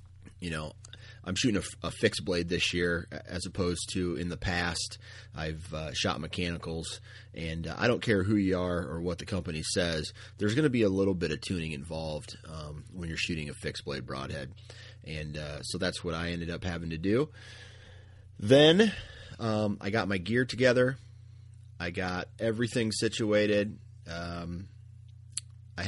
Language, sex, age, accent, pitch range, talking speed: English, male, 30-49, American, 90-110 Hz, 175 wpm